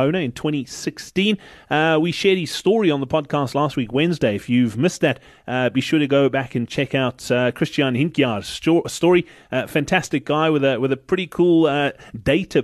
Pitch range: 135-175 Hz